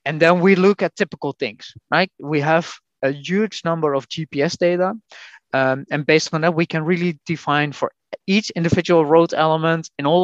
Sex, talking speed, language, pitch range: male, 190 wpm, English, 145-180 Hz